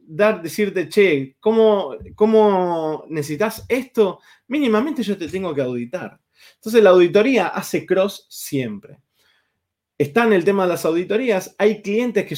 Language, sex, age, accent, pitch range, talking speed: Spanish, male, 20-39, Argentinian, 150-215 Hz, 140 wpm